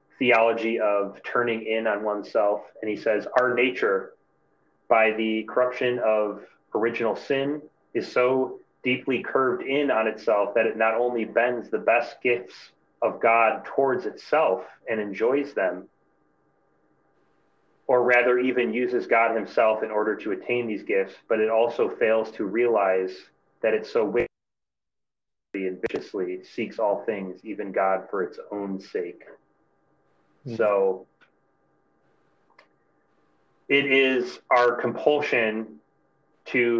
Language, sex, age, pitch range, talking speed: English, male, 30-49, 105-125 Hz, 135 wpm